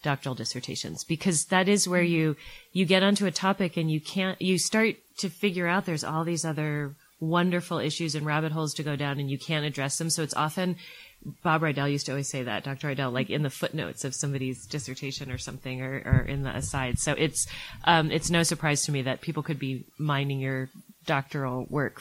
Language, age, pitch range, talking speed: English, 30-49, 135-165 Hz, 215 wpm